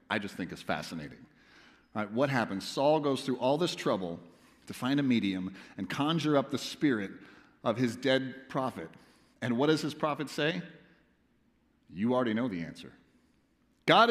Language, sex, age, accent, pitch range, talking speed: English, male, 40-59, American, 105-165 Hz, 160 wpm